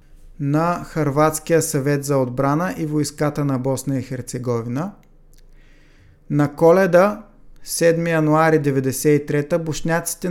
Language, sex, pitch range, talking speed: Bulgarian, male, 140-165 Hz, 100 wpm